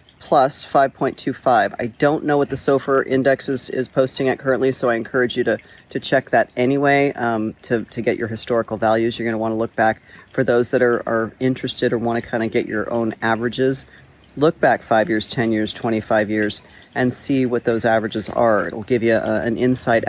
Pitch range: 115-145 Hz